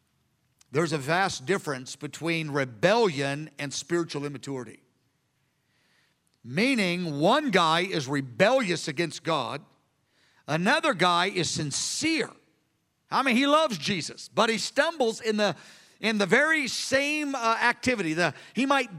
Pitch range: 155-225 Hz